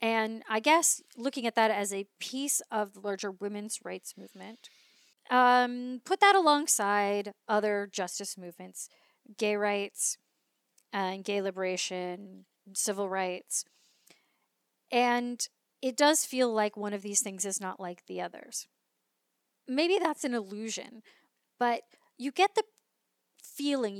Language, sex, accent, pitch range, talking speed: English, female, American, 205-260 Hz, 130 wpm